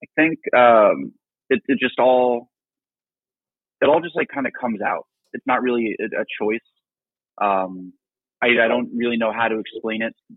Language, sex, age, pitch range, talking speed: English, male, 20-39, 105-120 Hz, 180 wpm